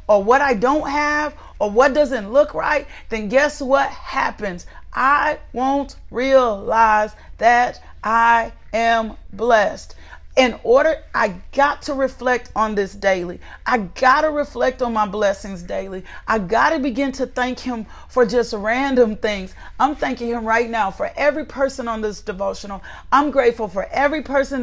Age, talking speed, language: 40-59, 160 wpm, English